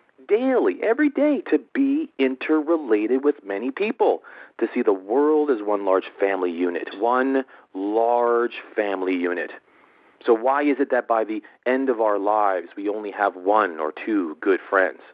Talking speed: 165 wpm